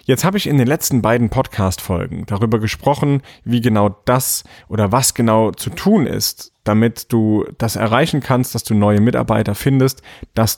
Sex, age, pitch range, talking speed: male, 30-49, 105-130 Hz, 170 wpm